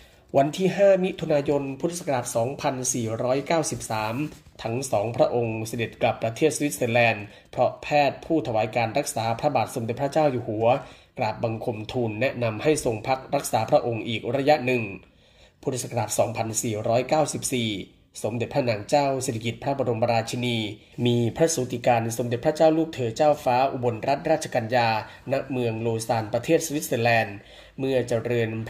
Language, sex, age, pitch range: Thai, male, 20-39, 115-145 Hz